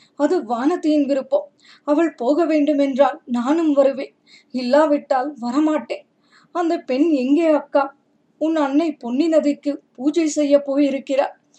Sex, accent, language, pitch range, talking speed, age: female, native, Tamil, 280-310 Hz, 110 wpm, 20-39